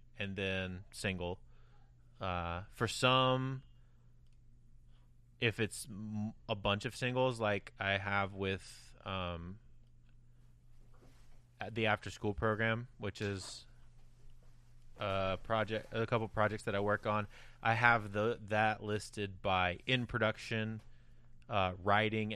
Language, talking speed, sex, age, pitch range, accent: English, 120 wpm, male, 30-49, 100-120 Hz, American